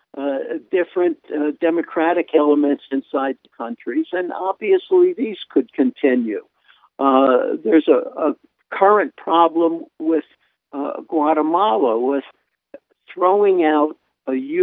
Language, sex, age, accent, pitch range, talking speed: English, male, 60-79, American, 135-220 Hz, 110 wpm